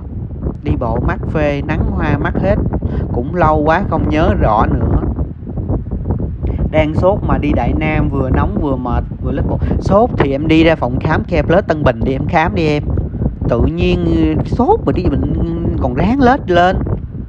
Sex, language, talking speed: male, Vietnamese, 185 wpm